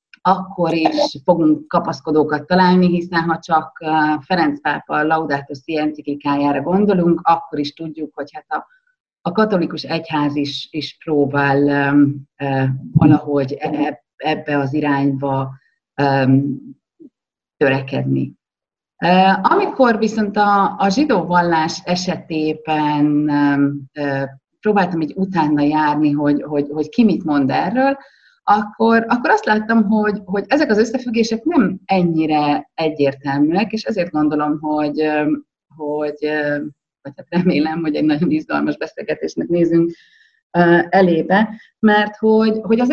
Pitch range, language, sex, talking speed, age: 150-195 Hz, Hungarian, female, 120 wpm, 30-49